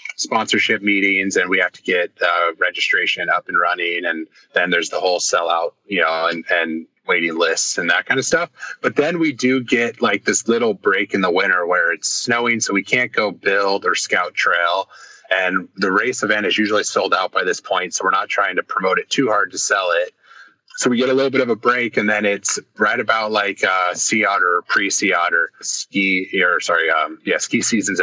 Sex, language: male, English